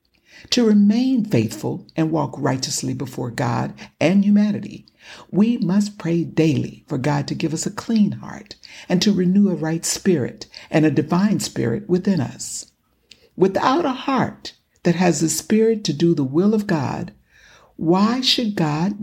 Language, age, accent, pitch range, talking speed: English, 60-79, American, 150-200 Hz, 160 wpm